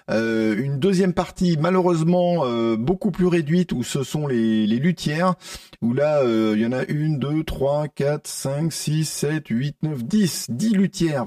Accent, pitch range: French, 125-190 Hz